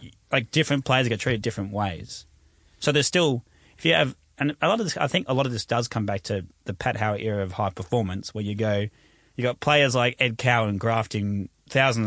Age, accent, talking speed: 30-49, Australian, 230 wpm